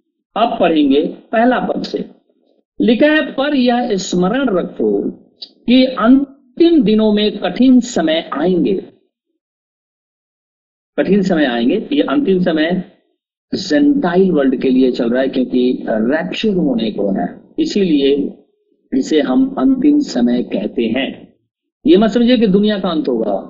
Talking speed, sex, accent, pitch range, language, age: 130 wpm, male, native, 185-280 Hz, Hindi, 50-69